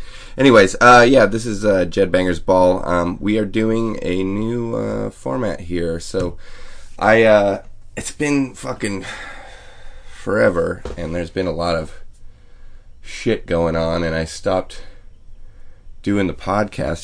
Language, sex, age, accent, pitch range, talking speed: English, male, 20-39, American, 90-110 Hz, 140 wpm